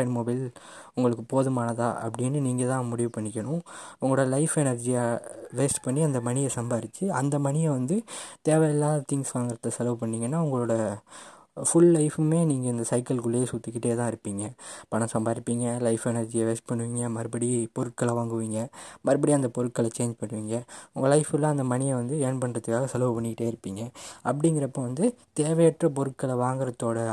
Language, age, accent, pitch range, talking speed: Tamil, 20-39, native, 115-140 Hz, 135 wpm